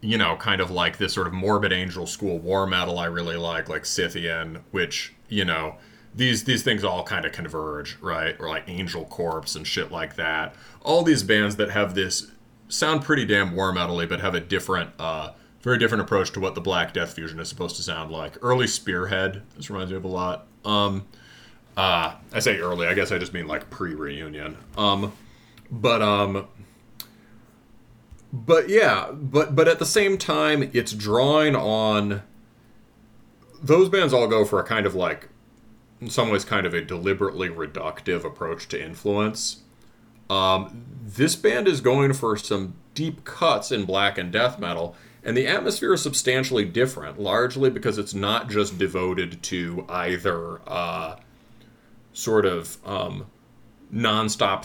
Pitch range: 95-120 Hz